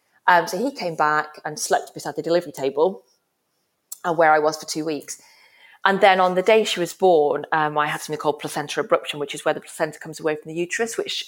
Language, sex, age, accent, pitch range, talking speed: English, female, 30-49, British, 150-190 Hz, 235 wpm